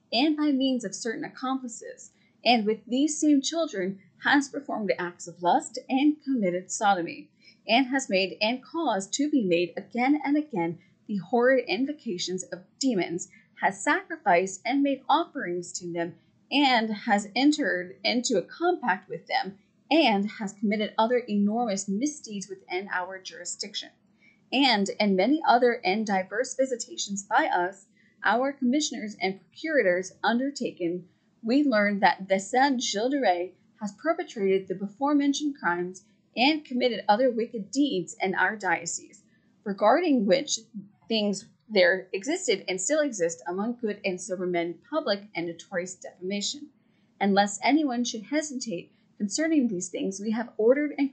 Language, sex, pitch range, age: English, female, 190-265 Hz, 30-49